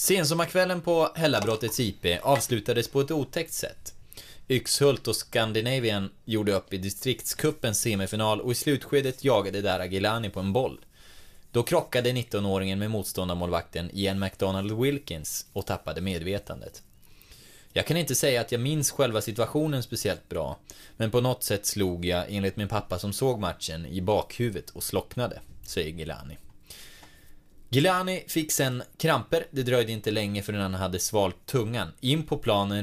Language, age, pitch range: Swedish, 20-39, 95-130 Hz